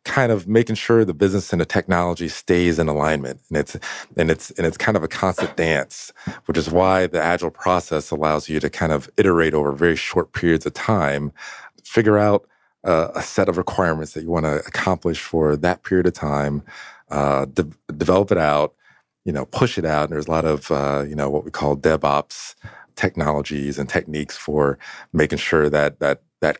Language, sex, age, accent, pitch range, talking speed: English, male, 40-59, American, 75-100 Hz, 200 wpm